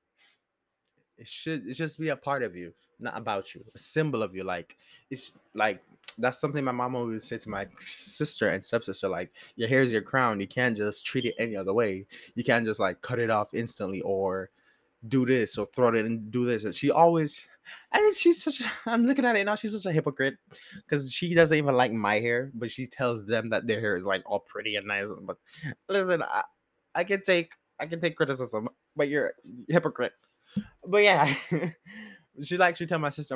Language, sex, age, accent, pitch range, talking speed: English, male, 20-39, American, 120-170 Hz, 215 wpm